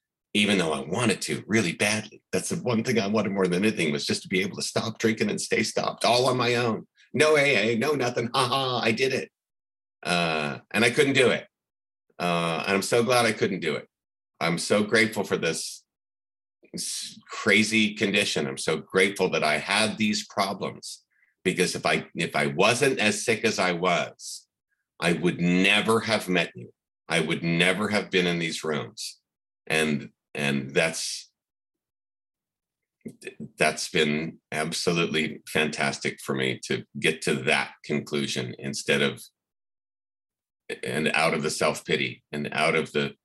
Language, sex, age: English, male, 50-69